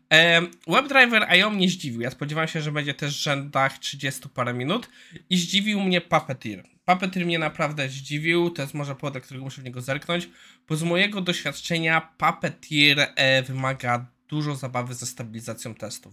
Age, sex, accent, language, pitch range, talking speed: 20-39, male, native, Polish, 130-175 Hz, 160 wpm